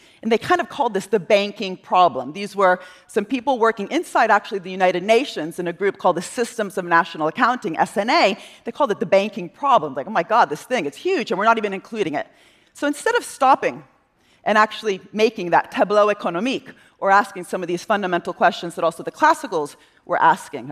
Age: 40-59